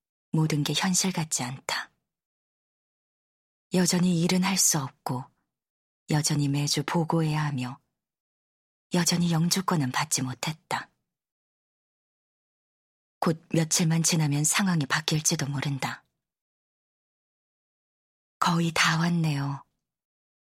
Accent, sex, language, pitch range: native, female, Korean, 145-175 Hz